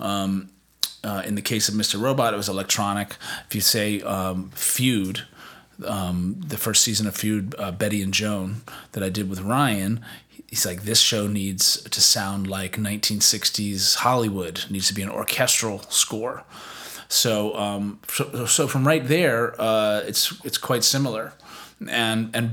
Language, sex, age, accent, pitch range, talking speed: English, male, 30-49, American, 105-135 Hz, 165 wpm